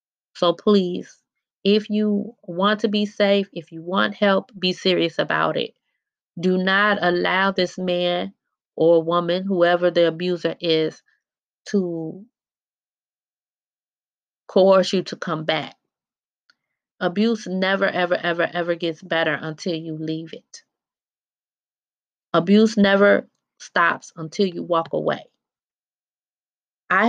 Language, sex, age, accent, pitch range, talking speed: English, female, 20-39, American, 170-200 Hz, 115 wpm